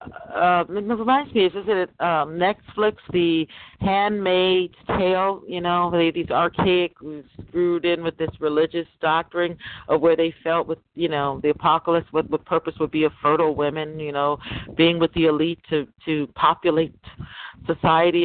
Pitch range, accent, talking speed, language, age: 155-185 Hz, American, 160 wpm, English, 50-69